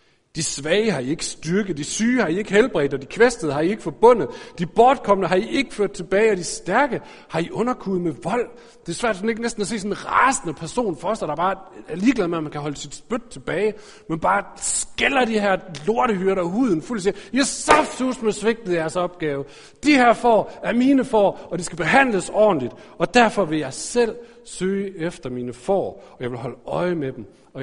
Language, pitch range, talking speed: Danish, 130-215 Hz, 225 wpm